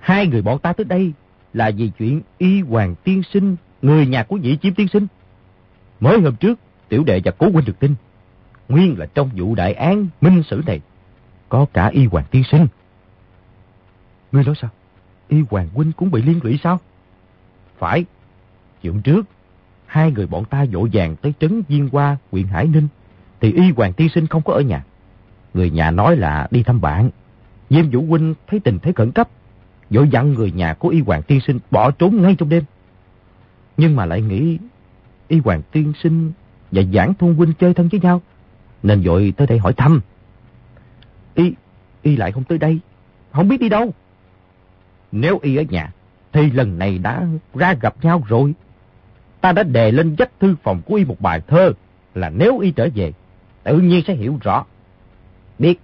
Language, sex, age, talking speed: Vietnamese, male, 30-49, 190 wpm